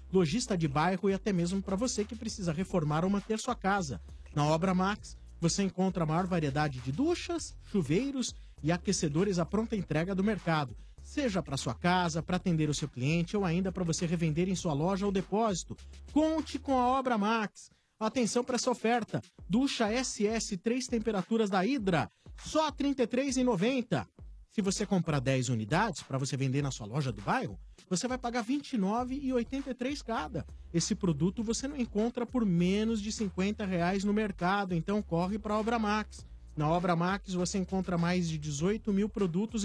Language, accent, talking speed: Portuguese, Brazilian, 175 wpm